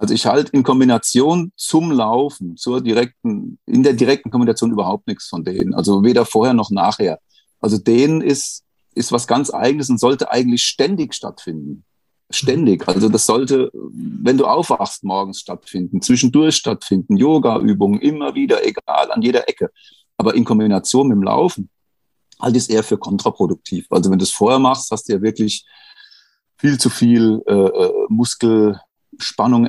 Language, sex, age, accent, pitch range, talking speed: German, male, 40-59, German, 110-145 Hz, 165 wpm